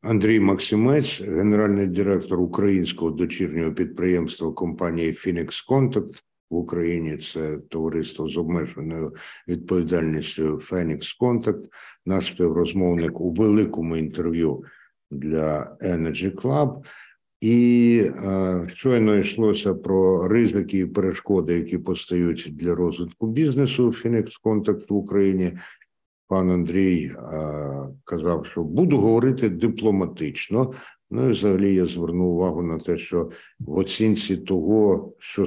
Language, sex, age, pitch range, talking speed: Ukrainian, male, 60-79, 85-105 Hz, 110 wpm